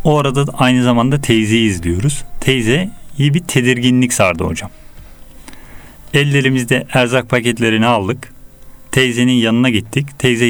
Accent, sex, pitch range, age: native, male, 115-140 Hz, 40-59